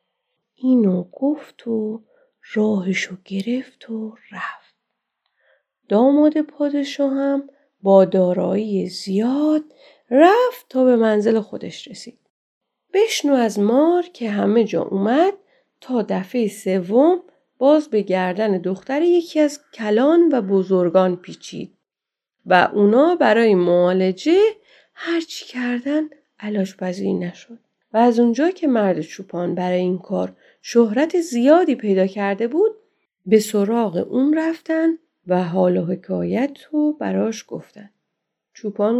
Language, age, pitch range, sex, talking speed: Persian, 30-49, 205-300 Hz, female, 115 wpm